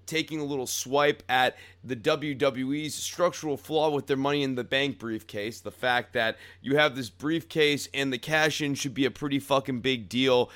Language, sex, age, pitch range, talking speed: English, male, 30-49, 120-150 Hz, 190 wpm